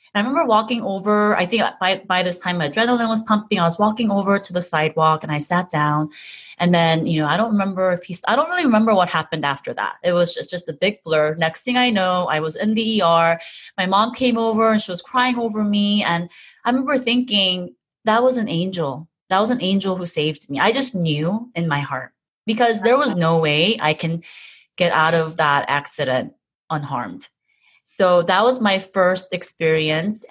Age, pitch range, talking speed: 30-49, 155-205 Hz, 215 wpm